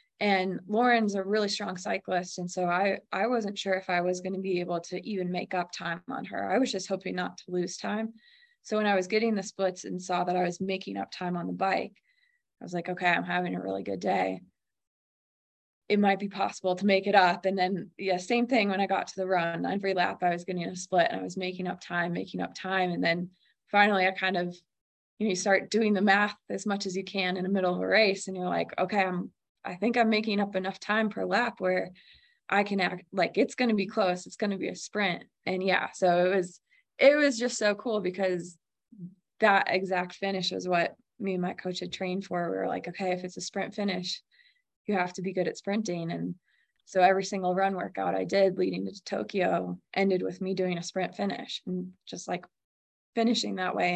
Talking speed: 240 wpm